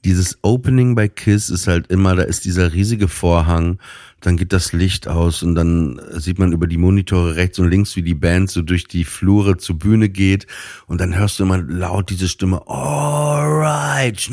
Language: German